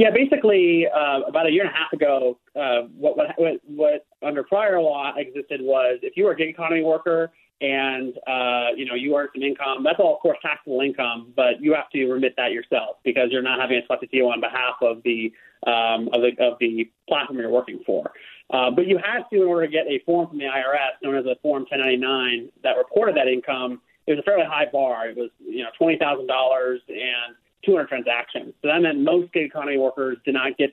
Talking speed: 225 wpm